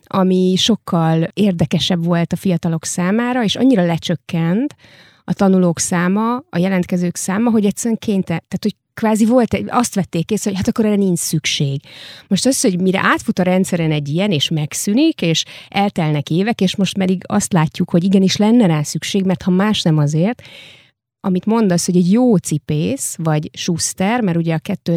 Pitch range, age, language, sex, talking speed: 165-205 Hz, 30-49, Hungarian, female, 170 wpm